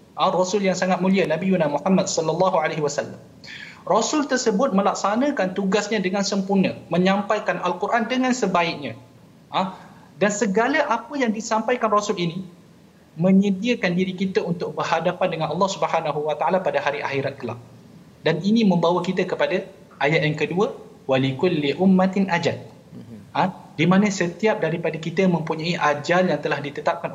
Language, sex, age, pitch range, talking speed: Malayalam, male, 20-39, 160-200 Hz, 150 wpm